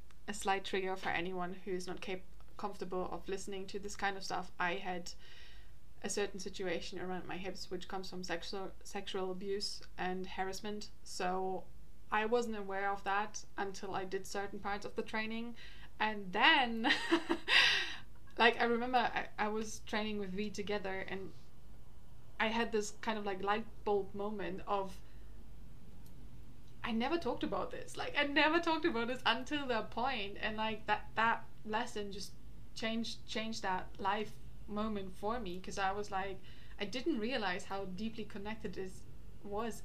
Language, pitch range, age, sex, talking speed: English, 190-220 Hz, 20-39, female, 160 wpm